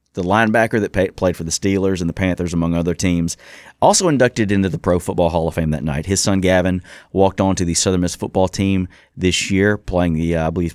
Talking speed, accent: 240 wpm, American